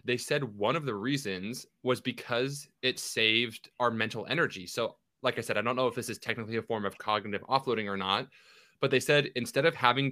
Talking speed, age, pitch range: 220 wpm, 20-39, 105-135 Hz